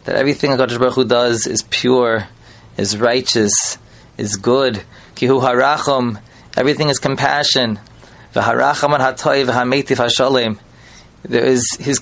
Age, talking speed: 20-39, 100 wpm